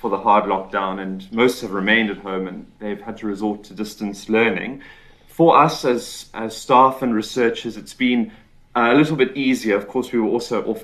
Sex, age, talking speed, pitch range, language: male, 30-49, 205 wpm, 105-135 Hz, English